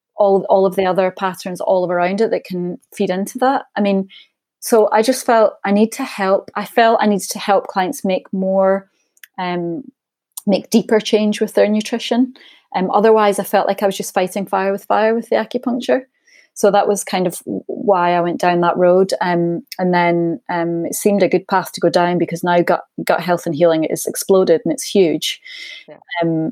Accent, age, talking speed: British, 30-49, 205 wpm